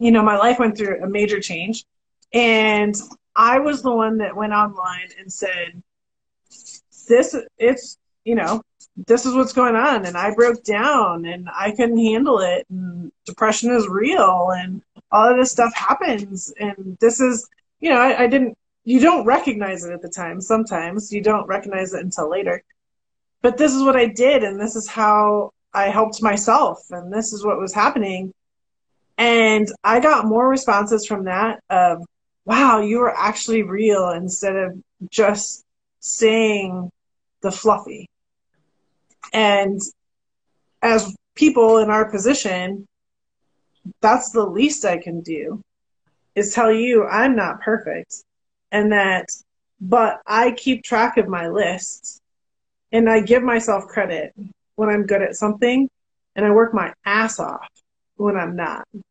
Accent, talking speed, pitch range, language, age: American, 155 wpm, 195-235 Hz, English, 20-39